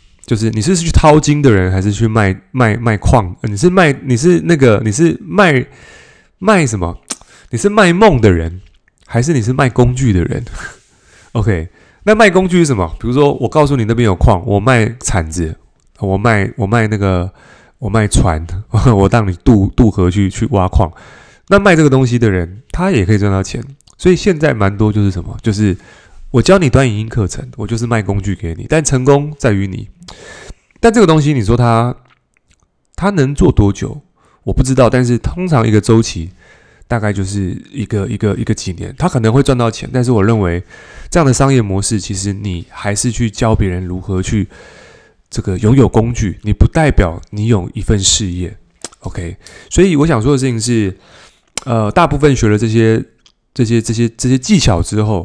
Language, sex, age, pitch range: Chinese, male, 20-39, 100-130 Hz